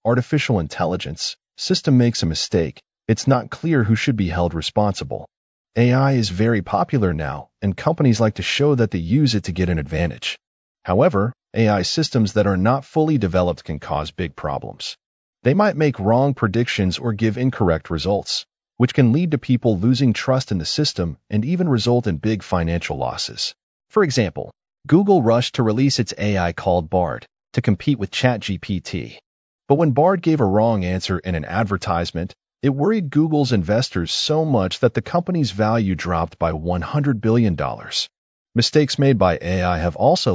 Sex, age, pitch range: male, 30-49, 95-135 Hz